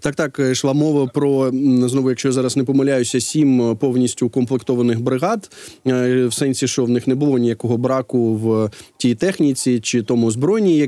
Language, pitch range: Ukrainian, 120-145 Hz